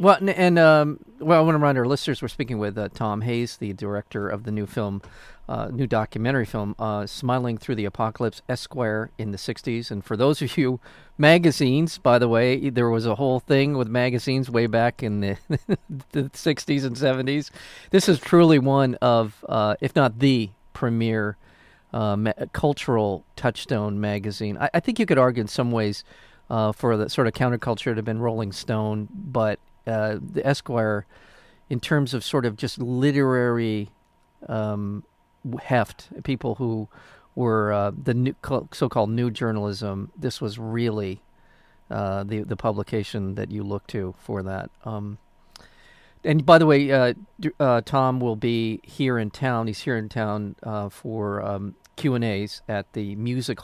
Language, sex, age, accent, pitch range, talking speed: English, male, 40-59, American, 105-130 Hz, 170 wpm